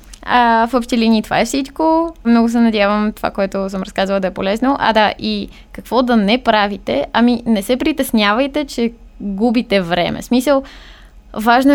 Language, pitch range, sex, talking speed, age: Bulgarian, 195-245 Hz, female, 170 wpm, 20-39